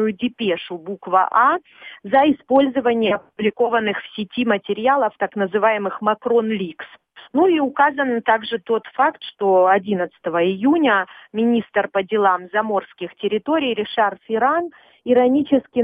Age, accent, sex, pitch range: 40-59, native, female, 195-235 Hz